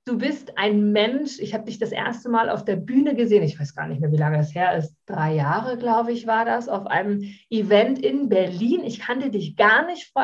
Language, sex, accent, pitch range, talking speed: German, female, German, 200-255 Hz, 240 wpm